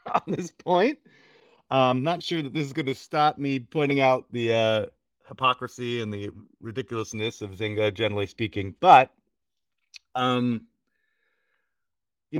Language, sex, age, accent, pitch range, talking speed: English, male, 40-59, American, 125-190 Hz, 140 wpm